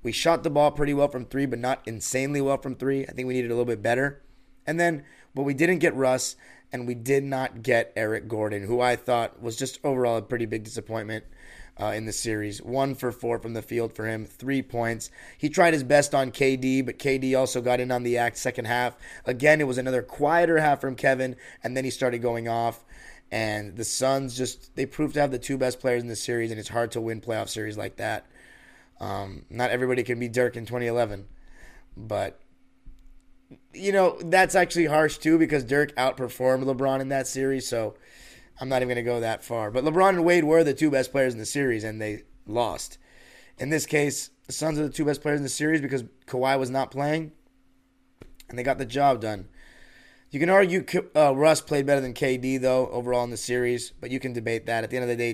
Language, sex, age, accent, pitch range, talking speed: English, male, 30-49, American, 115-140 Hz, 225 wpm